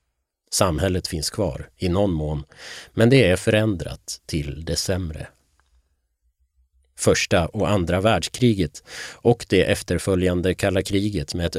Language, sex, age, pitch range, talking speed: Swedish, male, 30-49, 75-105 Hz, 120 wpm